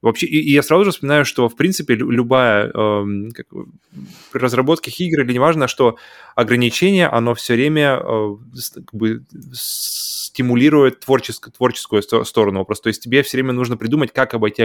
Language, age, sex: Russian, 20-39, male